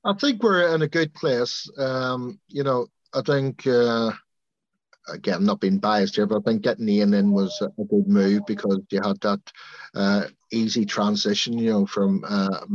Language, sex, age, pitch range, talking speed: English, male, 50-69, 100-135 Hz, 185 wpm